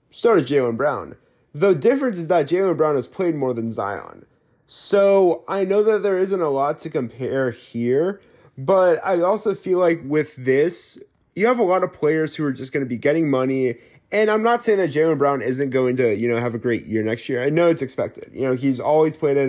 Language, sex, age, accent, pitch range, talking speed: English, male, 30-49, American, 130-170 Hz, 230 wpm